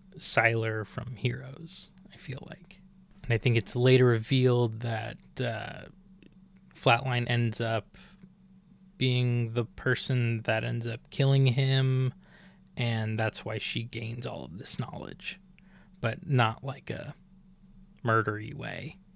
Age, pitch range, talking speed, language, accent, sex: 20-39, 115-160 Hz, 125 wpm, English, American, male